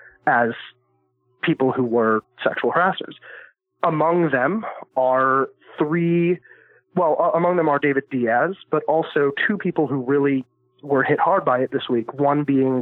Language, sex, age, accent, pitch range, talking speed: English, male, 20-39, American, 125-160 Hz, 145 wpm